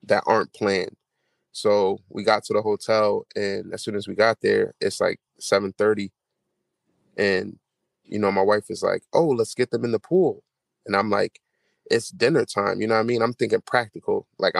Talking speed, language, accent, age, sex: 200 wpm, English, American, 20-39, male